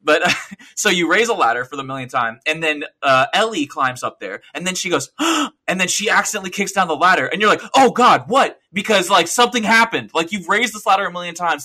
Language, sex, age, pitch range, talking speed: English, male, 20-39, 130-185 Hz, 245 wpm